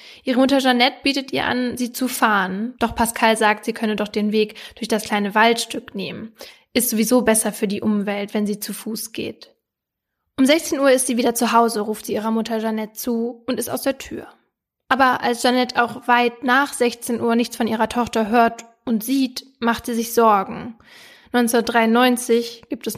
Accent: German